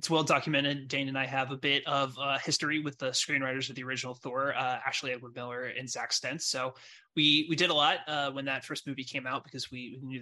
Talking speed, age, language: 240 wpm, 20-39, English